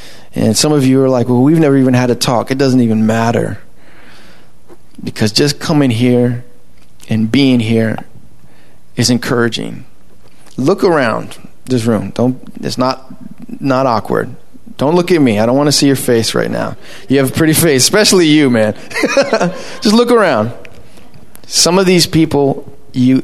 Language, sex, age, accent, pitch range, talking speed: English, male, 20-39, American, 120-155 Hz, 165 wpm